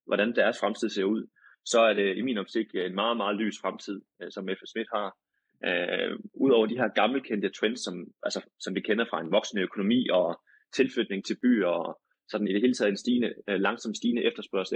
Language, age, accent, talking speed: Danish, 20-39, native, 195 wpm